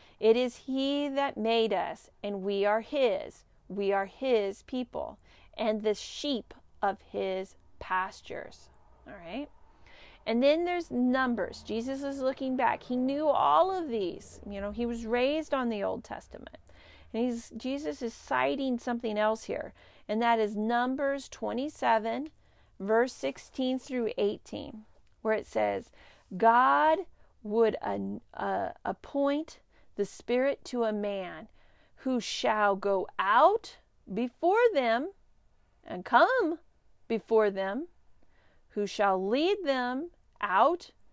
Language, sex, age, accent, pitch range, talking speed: English, female, 40-59, American, 215-300 Hz, 130 wpm